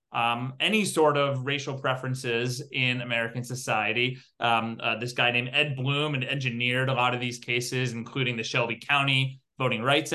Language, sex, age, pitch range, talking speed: English, male, 30-49, 130-165 Hz, 170 wpm